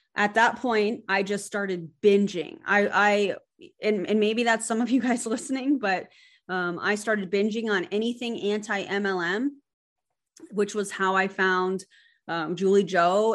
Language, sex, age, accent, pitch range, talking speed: English, female, 20-39, American, 185-230 Hz, 155 wpm